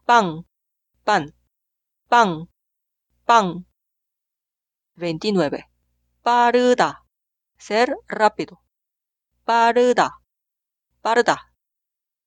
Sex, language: female, Korean